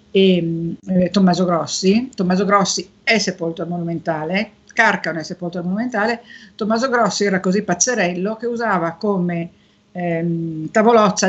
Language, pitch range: Italian, 180-210 Hz